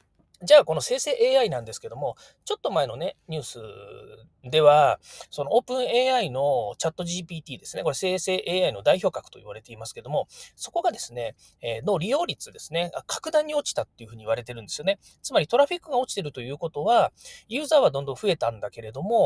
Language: Japanese